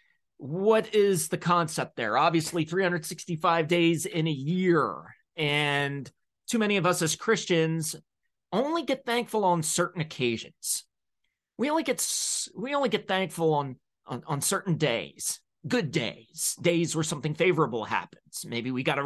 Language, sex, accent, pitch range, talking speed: English, male, American, 140-185 Hz, 150 wpm